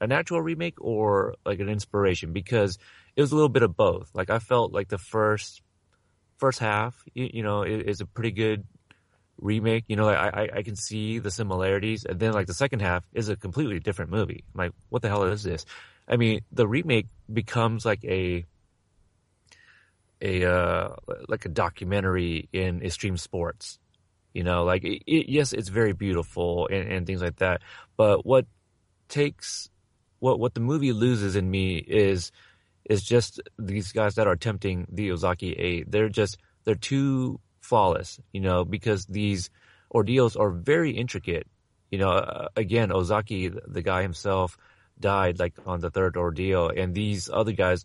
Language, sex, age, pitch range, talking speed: English, male, 30-49, 90-110 Hz, 175 wpm